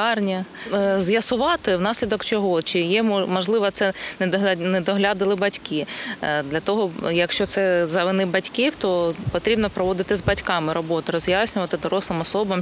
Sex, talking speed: female, 125 wpm